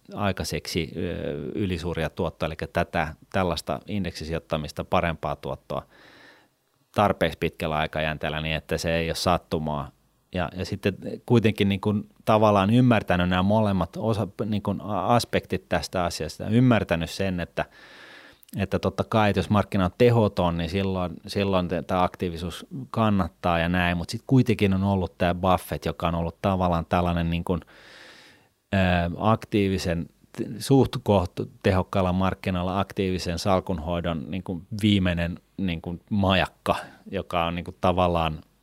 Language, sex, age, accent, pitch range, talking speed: Finnish, male, 30-49, native, 85-100 Hz, 130 wpm